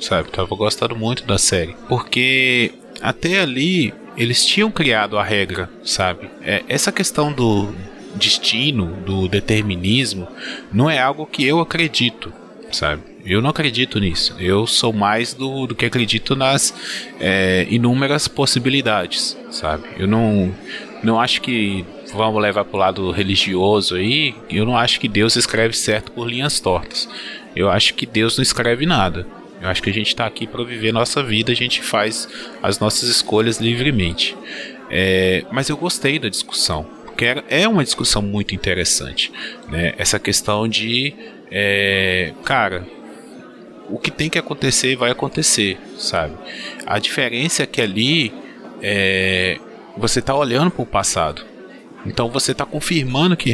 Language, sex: Portuguese, male